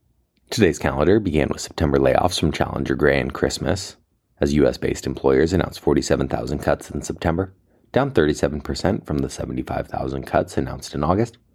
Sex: male